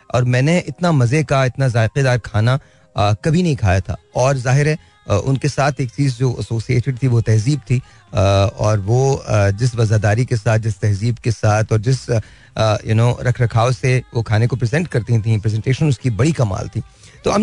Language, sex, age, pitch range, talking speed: Hindi, male, 30-49, 115-155 Hz, 190 wpm